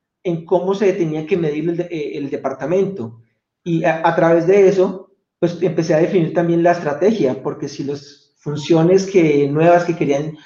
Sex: male